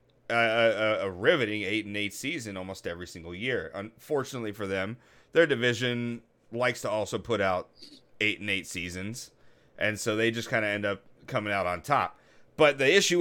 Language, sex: English, male